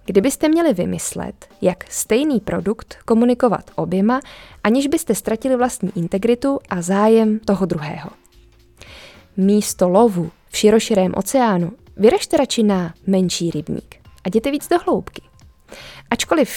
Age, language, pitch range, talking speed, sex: 20-39, Czech, 180-235 Hz, 120 wpm, female